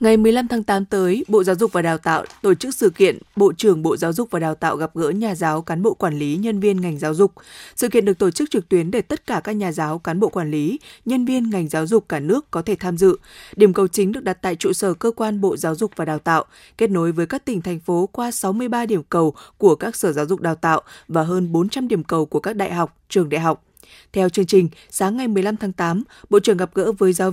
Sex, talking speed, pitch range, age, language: female, 270 wpm, 175-220 Hz, 20-39, Vietnamese